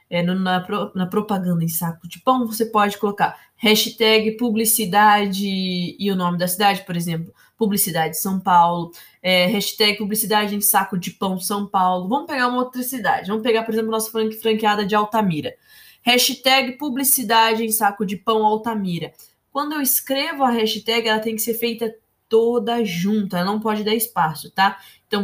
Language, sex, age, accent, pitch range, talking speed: Portuguese, female, 20-39, Brazilian, 195-245 Hz, 165 wpm